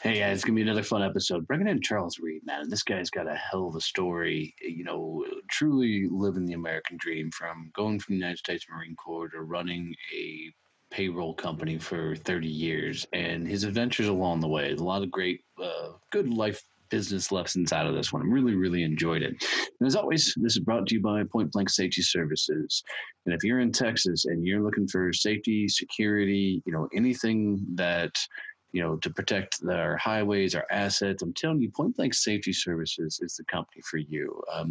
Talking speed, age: 205 wpm, 30-49